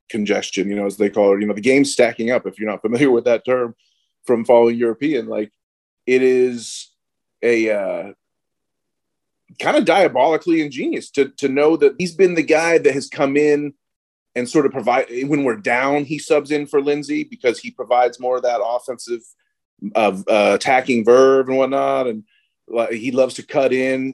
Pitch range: 115-175 Hz